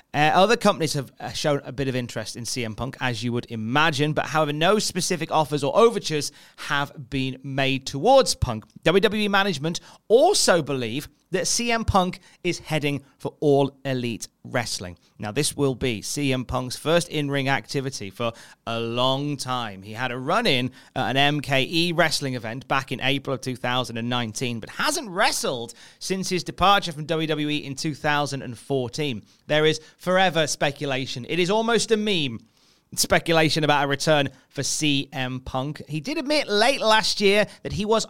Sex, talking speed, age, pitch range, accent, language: male, 165 wpm, 30-49, 125-175 Hz, British, English